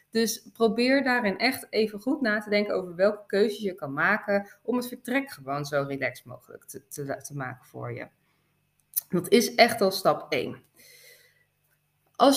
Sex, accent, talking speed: female, Dutch, 165 wpm